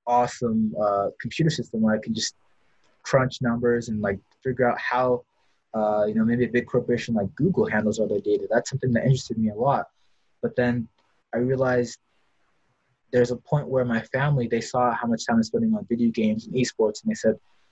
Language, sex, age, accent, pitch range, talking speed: English, male, 20-39, American, 110-125 Hz, 205 wpm